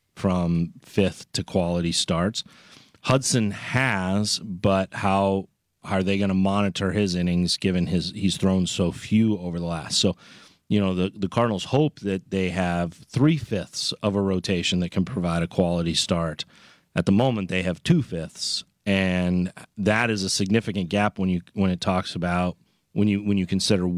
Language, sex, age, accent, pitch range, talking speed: English, male, 30-49, American, 90-105 Hz, 175 wpm